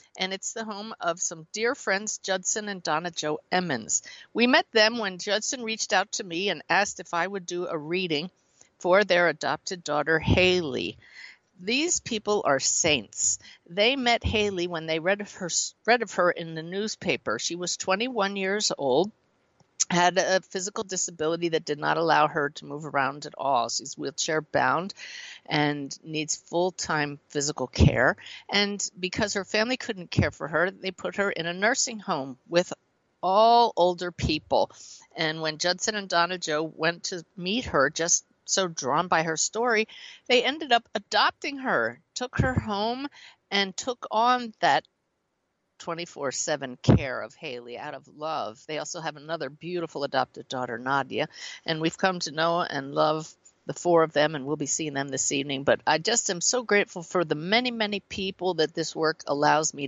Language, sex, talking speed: English, female, 175 wpm